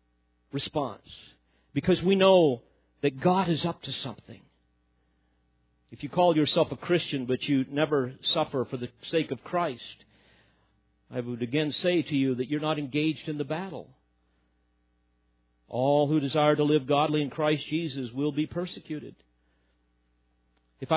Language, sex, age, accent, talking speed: English, male, 50-69, American, 145 wpm